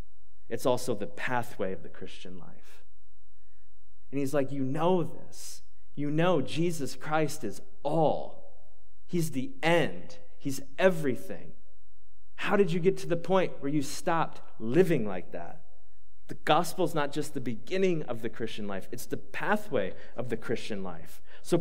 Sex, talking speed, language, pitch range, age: male, 155 wpm, English, 125-175 Hz, 30-49